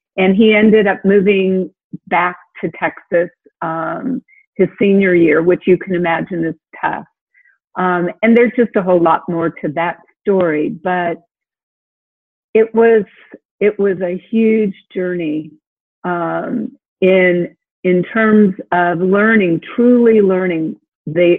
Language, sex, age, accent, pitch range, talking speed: English, female, 50-69, American, 170-215 Hz, 130 wpm